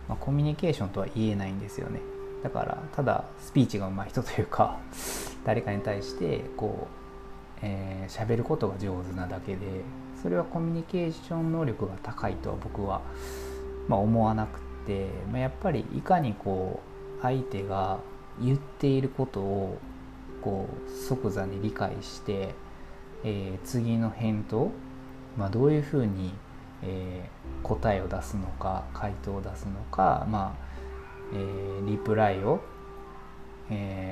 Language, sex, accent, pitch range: Japanese, male, native, 95-130 Hz